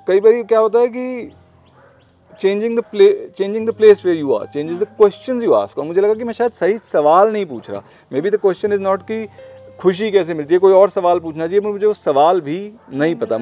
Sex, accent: male, native